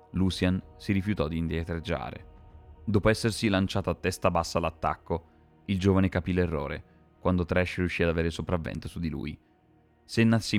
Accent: native